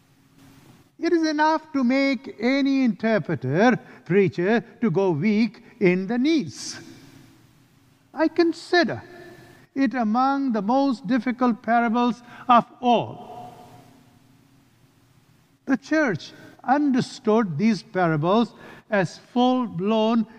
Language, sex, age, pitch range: English, male, 50-69, 150-220 Hz